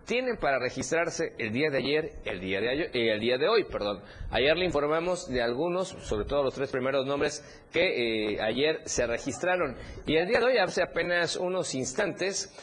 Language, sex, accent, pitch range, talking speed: Spanish, male, Mexican, 125-165 Hz, 200 wpm